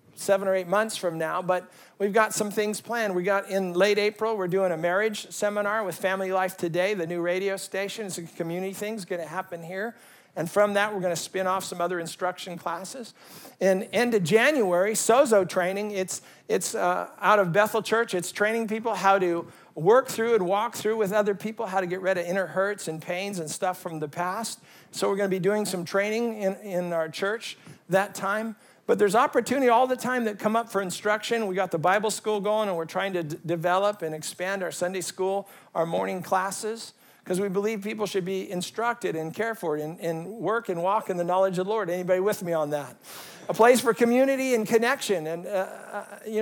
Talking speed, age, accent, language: 220 wpm, 50-69, American, English